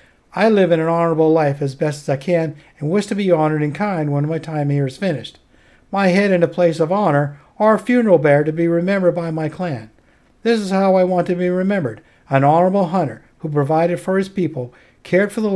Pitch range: 145-180 Hz